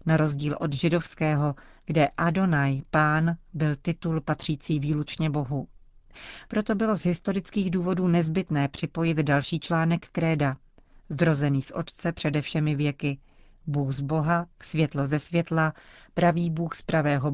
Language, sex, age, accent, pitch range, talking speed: Czech, female, 40-59, native, 150-175 Hz, 130 wpm